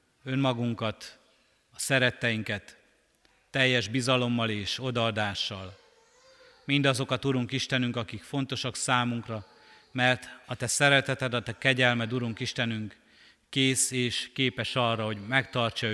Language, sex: Hungarian, male